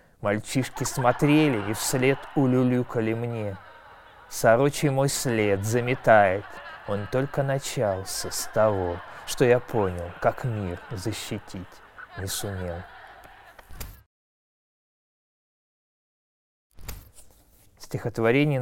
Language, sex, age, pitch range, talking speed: Russian, male, 20-39, 100-140 Hz, 75 wpm